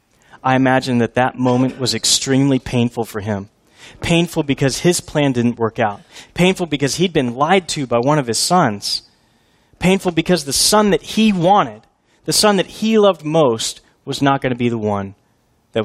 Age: 30-49